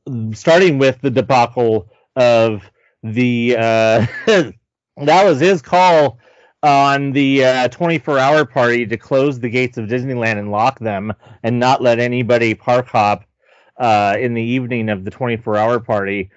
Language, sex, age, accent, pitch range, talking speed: English, male, 30-49, American, 115-155 Hz, 145 wpm